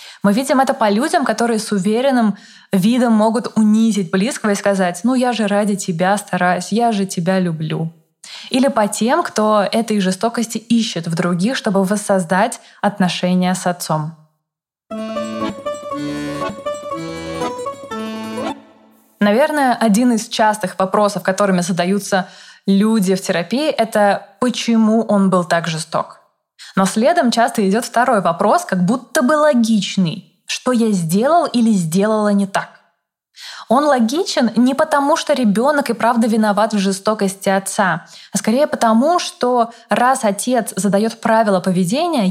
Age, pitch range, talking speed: 20-39, 190-235 Hz, 130 wpm